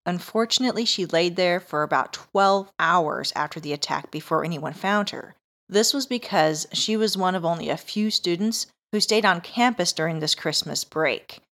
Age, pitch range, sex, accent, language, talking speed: 40-59, 160-200 Hz, female, American, English, 175 wpm